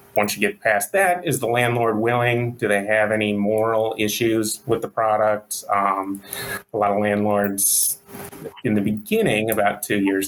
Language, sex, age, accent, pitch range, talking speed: English, male, 30-49, American, 105-110 Hz, 170 wpm